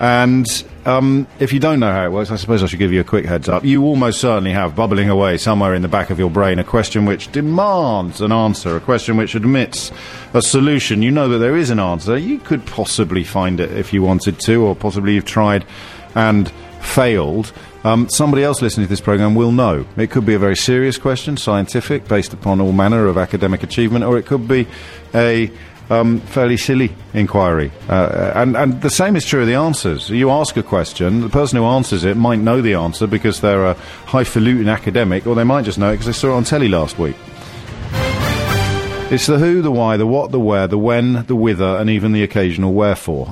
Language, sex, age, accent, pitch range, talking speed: English, male, 50-69, British, 100-125 Hz, 220 wpm